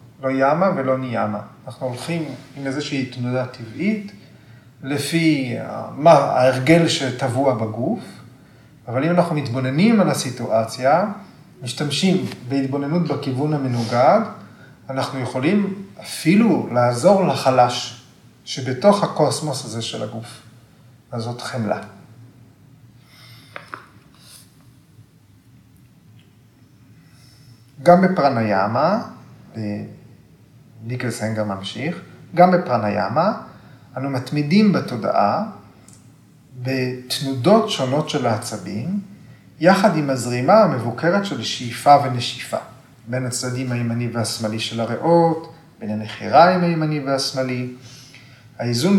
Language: Hebrew